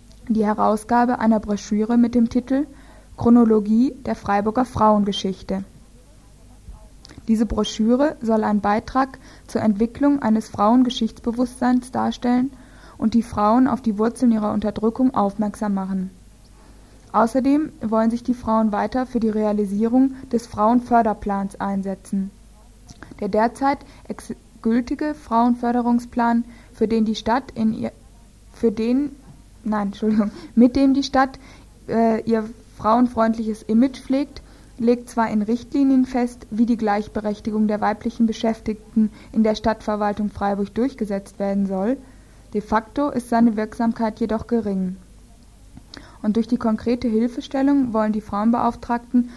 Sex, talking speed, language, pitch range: female, 120 wpm, German, 215-245 Hz